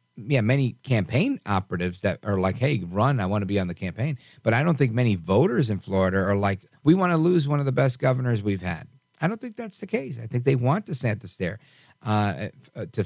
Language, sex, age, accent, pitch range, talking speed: English, male, 50-69, American, 100-135 Hz, 235 wpm